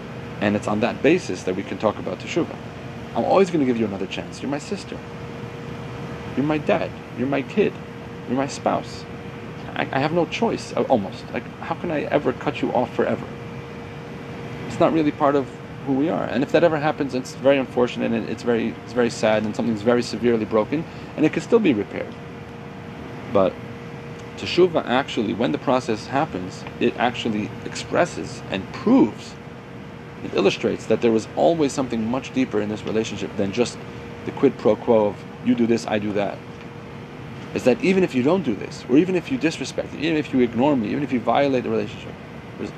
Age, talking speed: 30-49, 200 wpm